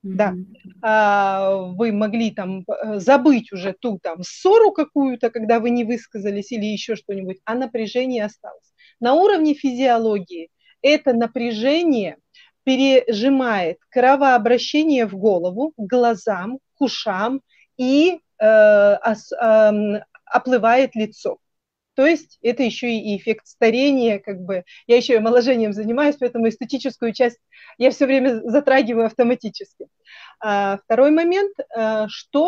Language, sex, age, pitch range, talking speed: Russian, female, 30-49, 215-275 Hz, 115 wpm